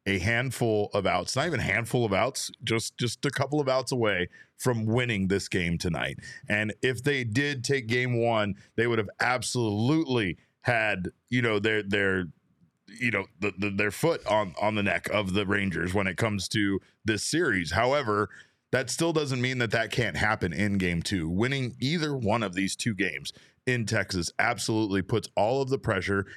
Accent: American